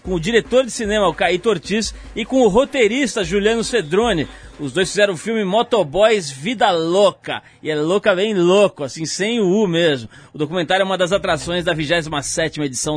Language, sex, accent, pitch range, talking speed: Portuguese, male, Brazilian, 145-200 Hz, 190 wpm